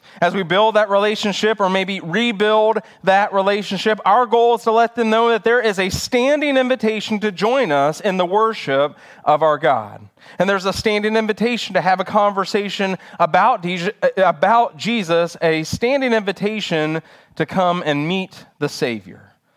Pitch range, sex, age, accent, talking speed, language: 165-220 Hz, male, 30-49, American, 165 wpm, English